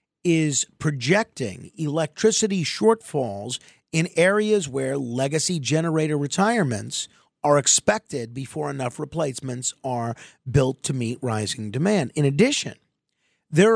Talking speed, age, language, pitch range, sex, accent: 105 wpm, 40-59, English, 135-185 Hz, male, American